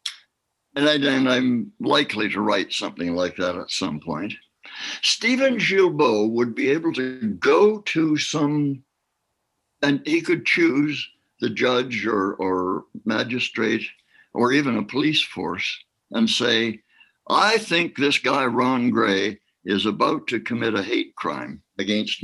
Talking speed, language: 140 wpm, English